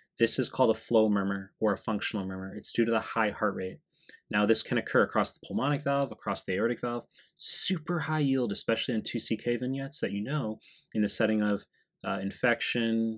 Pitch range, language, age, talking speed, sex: 100-115 Hz, English, 20-39, 205 wpm, male